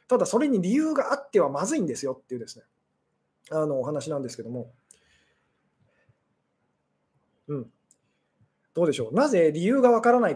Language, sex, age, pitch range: Japanese, male, 20-39, 140-220 Hz